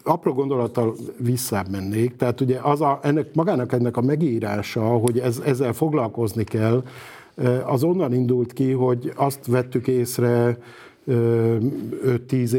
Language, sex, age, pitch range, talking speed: Hungarian, male, 50-69, 115-130 Hz, 130 wpm